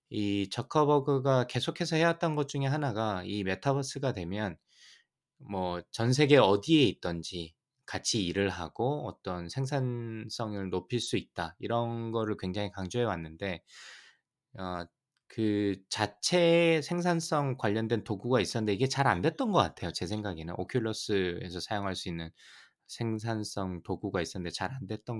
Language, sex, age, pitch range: Korean, male, 20-39, 95-130 Hz